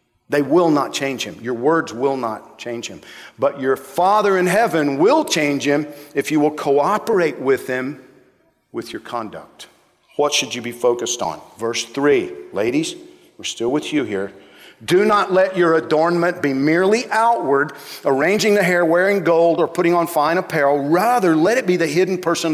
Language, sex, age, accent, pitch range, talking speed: English, male, 50-69, American, 130-185 Hz, 180 wpm